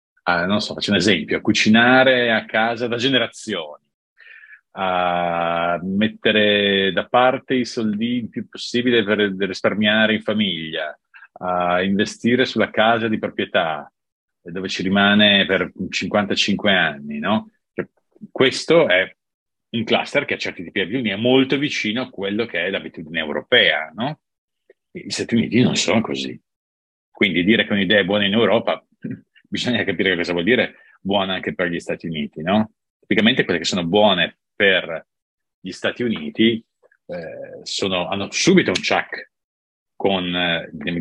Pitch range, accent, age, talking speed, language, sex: 90-125 Hz, Italian, 40-59, 145 wpm, English, male